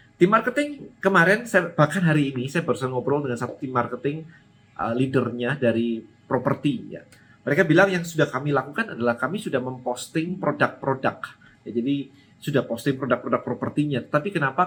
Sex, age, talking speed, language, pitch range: male, 30-49, 155 wpm, Indonesian, 125-180 Hz